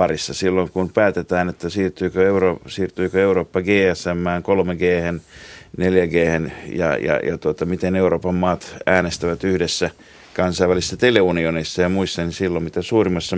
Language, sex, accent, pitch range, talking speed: Finnish, male, native, 85-100 Hz, 140 wpm